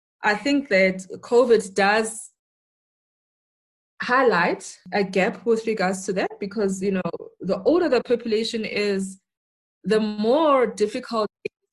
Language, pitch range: English, 185-220 Hz